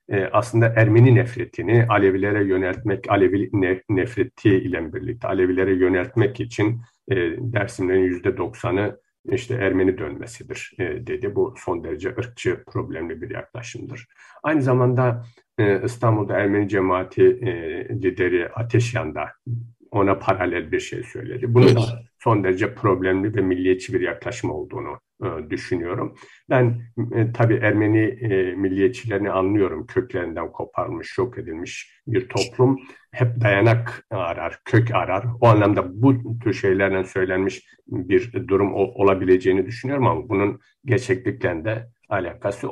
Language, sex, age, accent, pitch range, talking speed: Turkish, male, 50-69, native, 95-125 Hz, 110 wpm